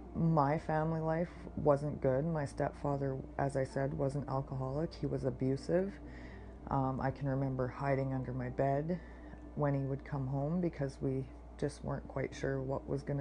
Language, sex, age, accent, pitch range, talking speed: English, female, 30-49, American, 135-165 Hz, 170 wpm